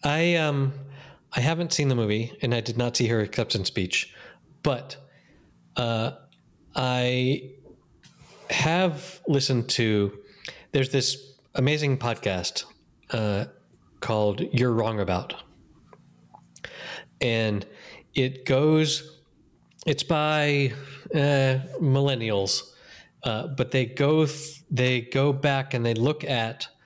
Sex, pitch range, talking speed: male, 105-140 Hz, 105 wpm